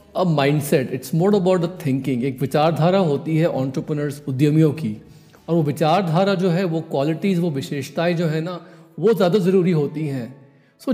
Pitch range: 140-175 Hz